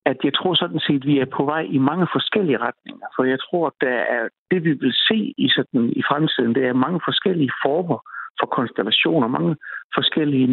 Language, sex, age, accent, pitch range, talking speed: Danish, male, 60-79, native, 120-155 Hz, 210 wpm